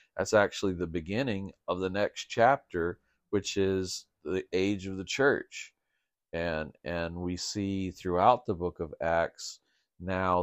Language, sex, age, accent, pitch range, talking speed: English, male, 50-69, American, 85-105 Hz, 145 wpm